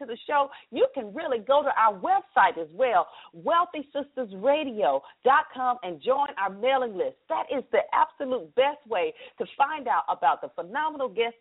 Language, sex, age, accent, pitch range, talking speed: English, female, 40-59, American, 220-305 Hz, 165 wpm